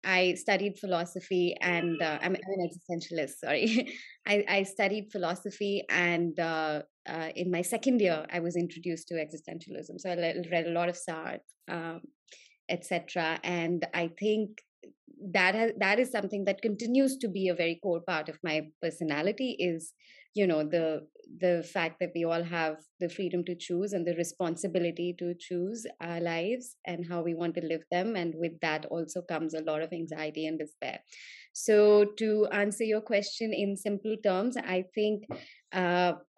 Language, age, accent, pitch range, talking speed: English, 20-39, Indian, 170-210 Hz, 170 wpm